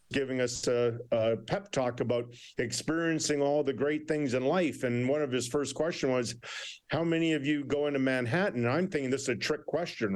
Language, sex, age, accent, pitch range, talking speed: English, male, 50-69, American, 135-165 Hz, 215 wpm